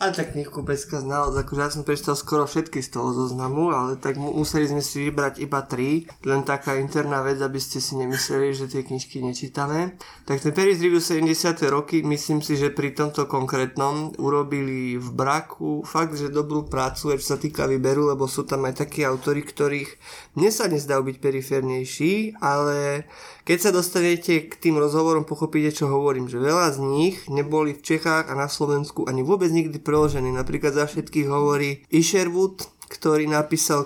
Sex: male